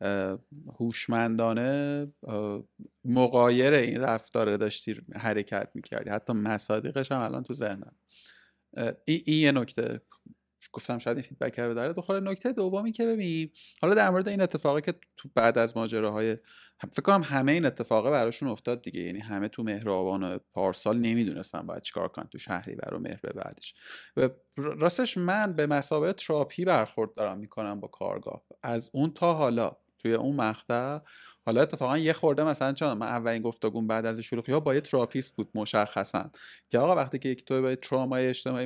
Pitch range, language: 115-150 Hz, Persian